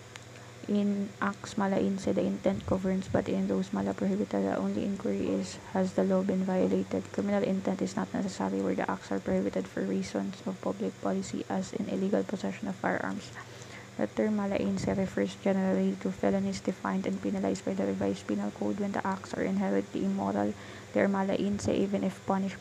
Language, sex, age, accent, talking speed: English, female, 20-39, Filipino, 180 wpm